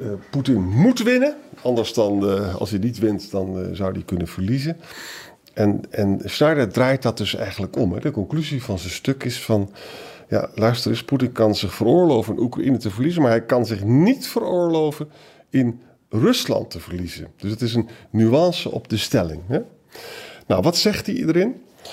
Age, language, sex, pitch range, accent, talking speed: 50-69, Dutch, male, 95-130 Hz, Dutch, 185 wpm